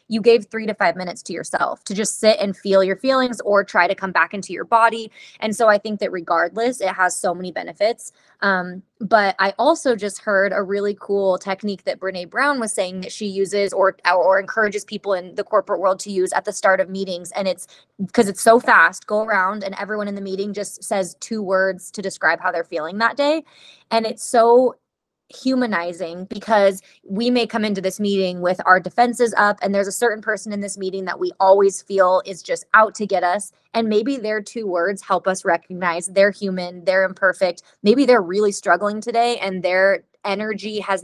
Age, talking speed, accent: 20-39, 210 wpm, American